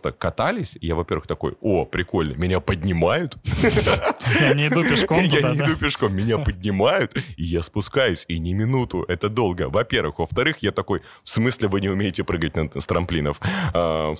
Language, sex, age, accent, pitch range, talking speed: Russian, male, 30-49, native, 85-110 Hz, 150 wpm